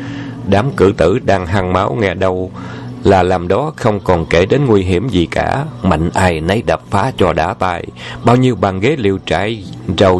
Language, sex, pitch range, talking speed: Vietnamese, male, 85-120 Hz, 200 wpm